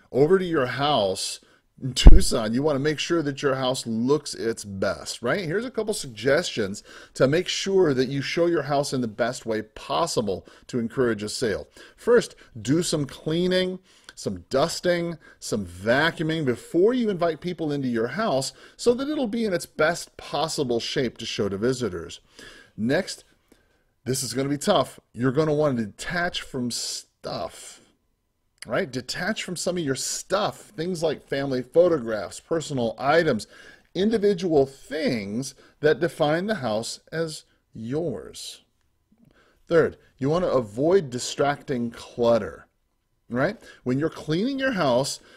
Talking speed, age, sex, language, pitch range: 155 wpm, 30-49, male, English, 125-170 Hz